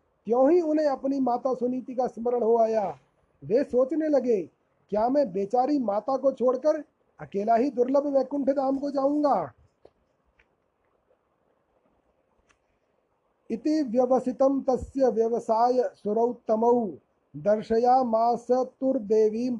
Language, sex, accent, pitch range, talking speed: Hindi, male, native, 215-255 Hz, 95 wpm